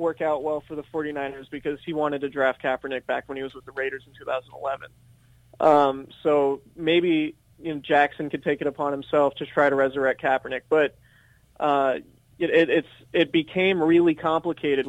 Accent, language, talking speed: American, English, 185 wpm